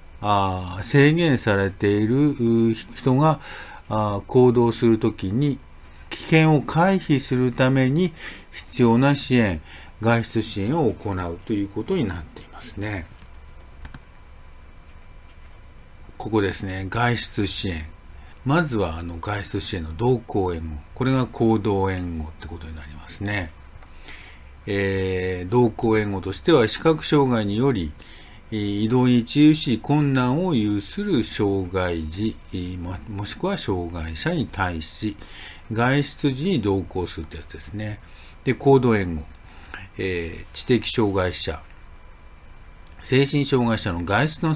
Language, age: Japanese, 50-69